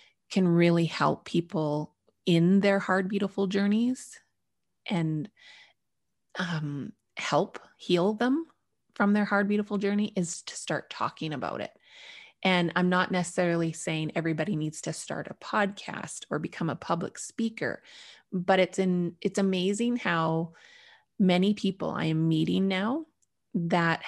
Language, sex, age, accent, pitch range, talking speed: English, female, 20-39, American, 170-210 Hz, 135 wpm